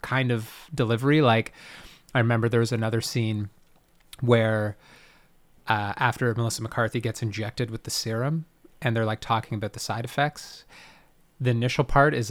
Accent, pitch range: American, 110-135 Hz